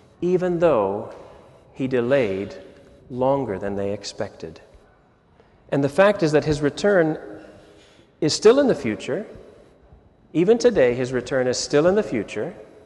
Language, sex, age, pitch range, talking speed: English, male, 40-59, 130-185 Hz, 135 wpm